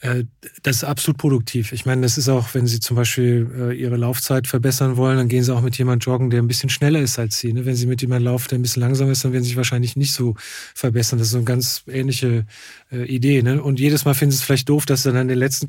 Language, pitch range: German, 125-145 Hz